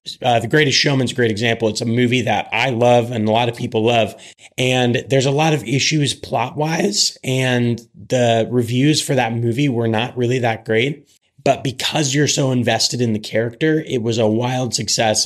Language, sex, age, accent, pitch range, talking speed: English, male, 30-49, American, 115-135 Hz, 195 wpm